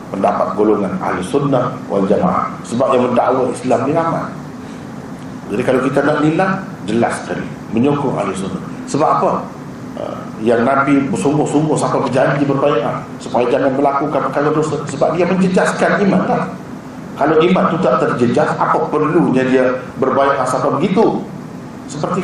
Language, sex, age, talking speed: Malay, male, 40-59, 140 wpm